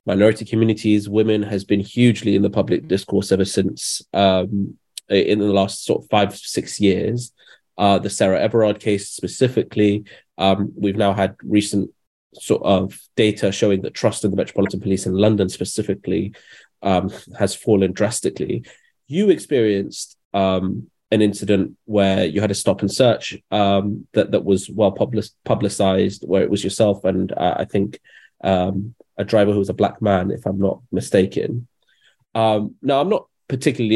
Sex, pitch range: male, 100-110 Hz